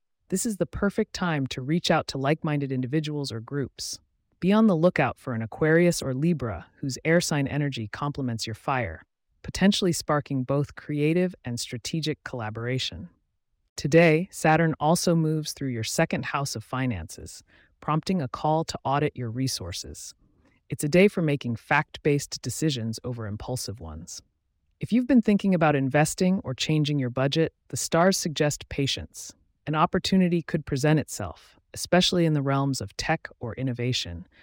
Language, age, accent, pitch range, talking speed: English, 30-49, American, 120-165 Hz, 155 wpm